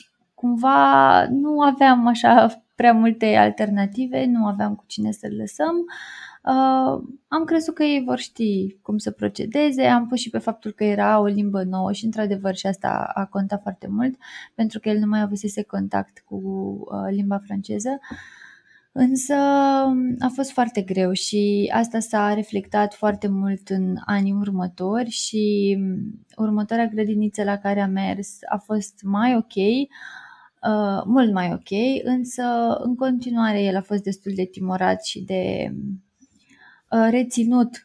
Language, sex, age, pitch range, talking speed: Romanian, female, 20-39, 195-240 Hz, 150 wpm